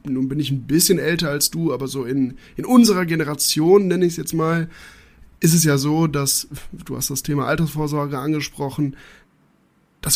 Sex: male